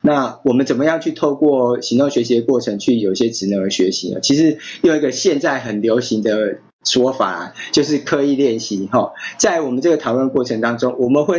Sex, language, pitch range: male, Chinese, 110-140 Hz